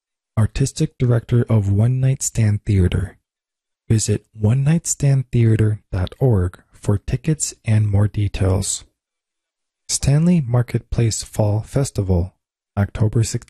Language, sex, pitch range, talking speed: English, male, 100-125 Hz, 85 wpm